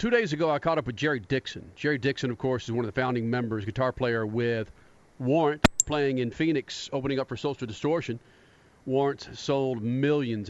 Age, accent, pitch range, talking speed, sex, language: 50-69, American, 120-140 Hz, 195 wpm, male, English